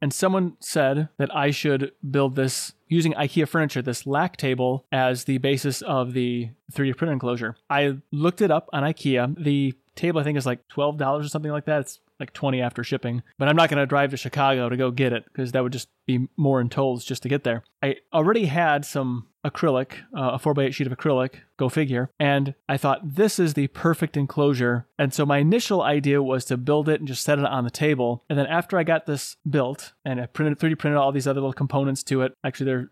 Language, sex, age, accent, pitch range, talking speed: English, male, 30-49, American, 130-150 Hz, 230 wpm